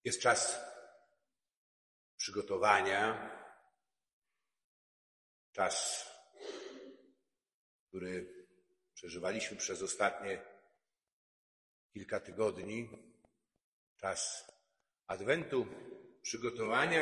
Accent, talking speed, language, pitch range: native, 45 wpm, Polish, 110-160 Hz